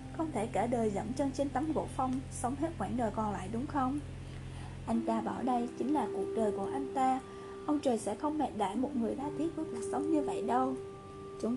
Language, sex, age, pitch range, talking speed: Vietnamese, female, 20-39, 205-275 Hz, 240 wpm